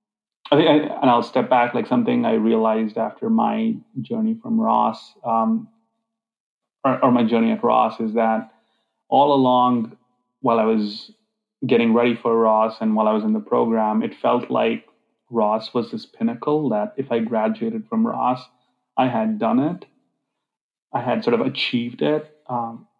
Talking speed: 170 wpm